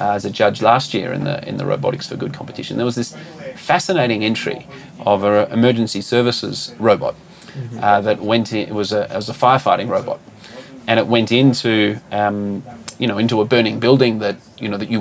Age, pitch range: 30-49, 105-120 Hz